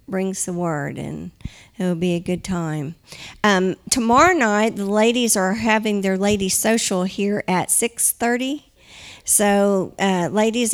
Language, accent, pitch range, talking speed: English, American, 180-205 Hz, 145 wpm